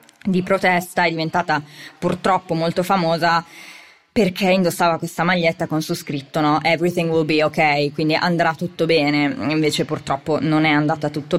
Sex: female